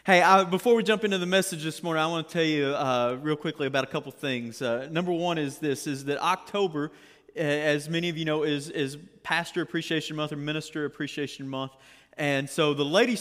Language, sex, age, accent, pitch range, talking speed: English, male, 30-49, American, 140-170 Hz, 220 wpm